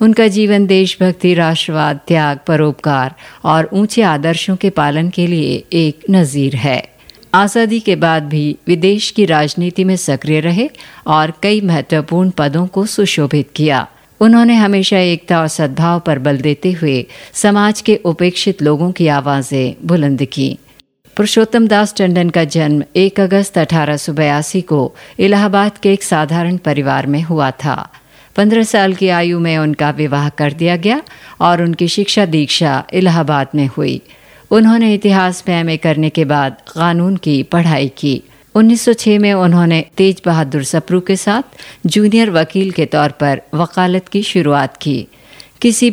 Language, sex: Hindi, female